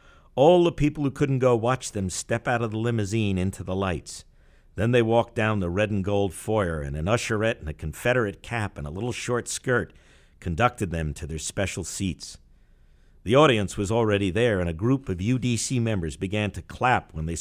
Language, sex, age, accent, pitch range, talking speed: English, male, 50-69, American, 85-120 Hz, 205 wpm